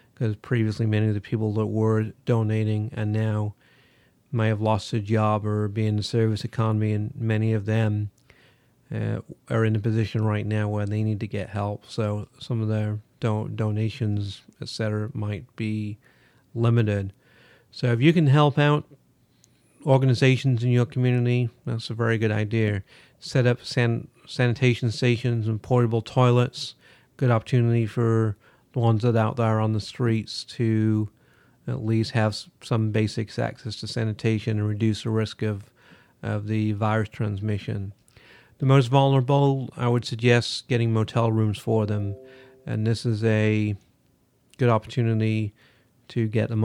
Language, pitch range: English, 110-120 Hz